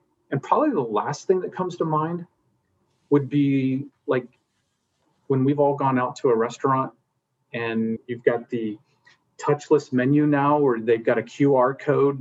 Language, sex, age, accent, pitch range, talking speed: English, male, 30-49, American, 110-135 Hz, 160 wpm